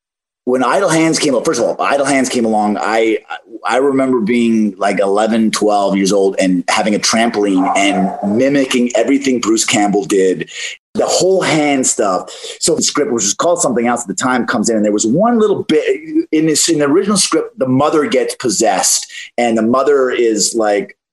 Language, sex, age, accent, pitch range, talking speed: English, male, 30-49, American, 105-145 Hz, 195 wpm